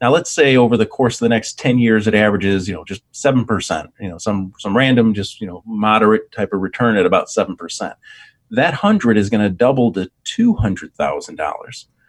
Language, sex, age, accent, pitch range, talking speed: English, male, 40-59, American, 105-135 Hz, 225 wpm